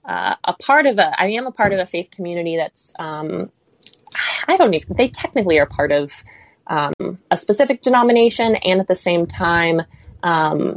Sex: female